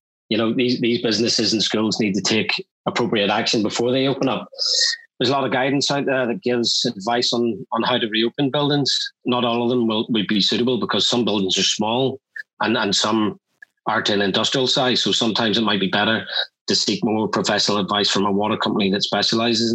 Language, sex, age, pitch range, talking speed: English, male, 30-49, 110-130 Hz, 205 wpm